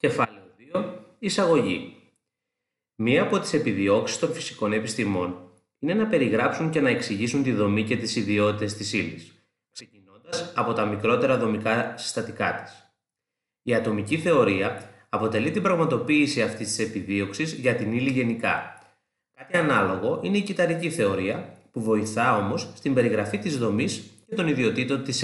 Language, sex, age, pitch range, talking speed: Greek, male, 30-49, 110-155 Hz, 145 wpm